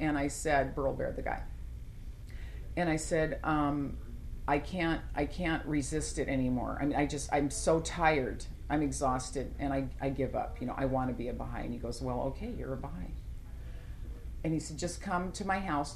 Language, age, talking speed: English, 40-59, 205 wpm